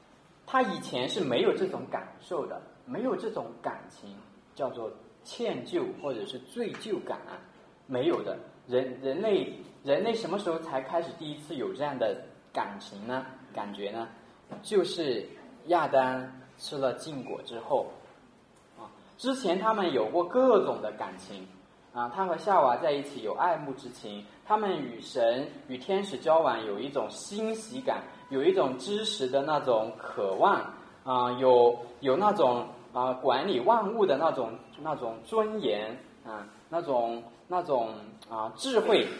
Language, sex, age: Chinese, male, 20-39